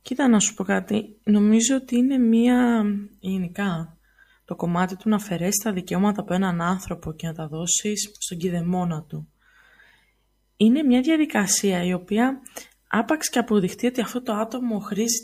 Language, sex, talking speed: Greek, female, 160 wpm